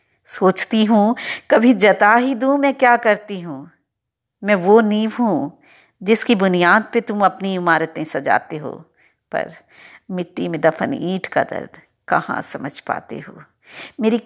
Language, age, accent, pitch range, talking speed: Hindi, 50-69, native, 175-235 Hz, 145 wpm